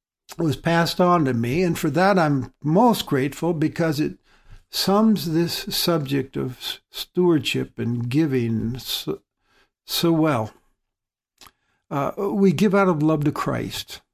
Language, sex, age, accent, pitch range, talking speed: English, male, 60-79, American, 130-170 Hz, 130 wpm